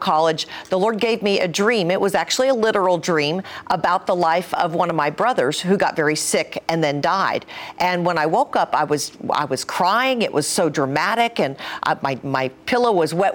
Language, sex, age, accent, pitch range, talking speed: English, female, 50-69, American, 155-200 Hz, 220 wpm